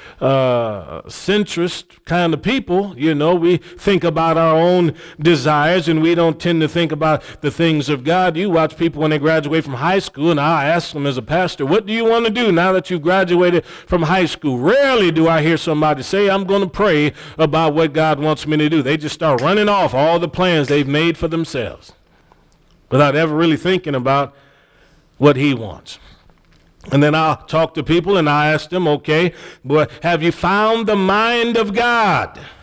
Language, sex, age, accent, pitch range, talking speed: English, male, 40-59, American, 145-175 Hz, 200 wpm